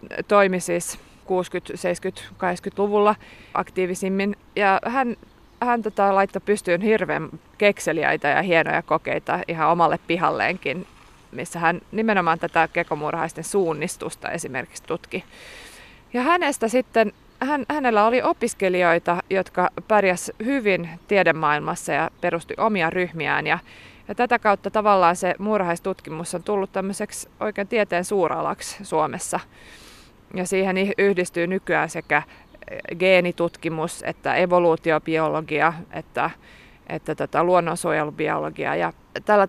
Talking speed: 110 wpm